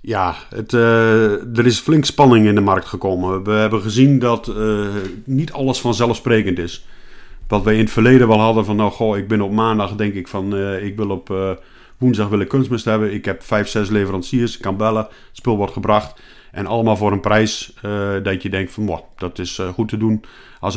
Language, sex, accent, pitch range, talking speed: Dutch, male, Dutch, 100-115 Hz, 210 wpm